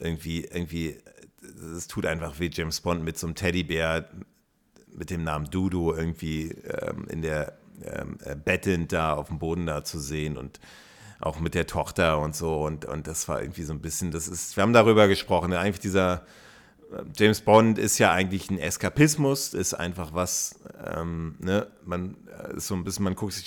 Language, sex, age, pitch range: German, male, 40-59, 80-100 Hz